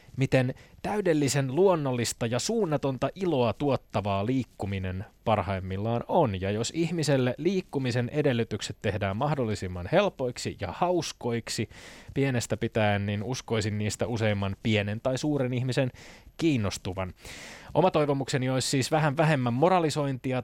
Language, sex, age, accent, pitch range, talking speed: Finnish, male, 20-39, native, 110-140 Hz, 110 wpm